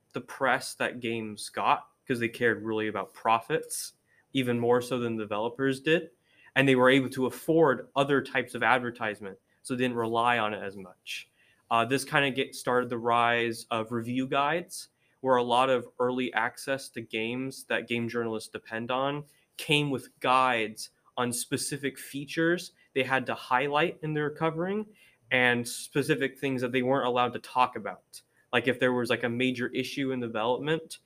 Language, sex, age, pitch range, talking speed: English, male, 20-39, 120-140 Hz, 175 wpm